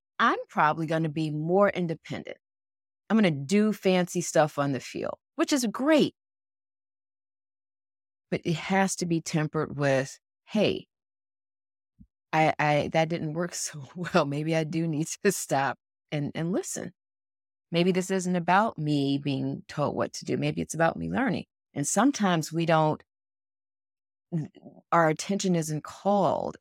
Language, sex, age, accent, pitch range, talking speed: English, female, 30-49, American, 160-250 Hz, 150 wpm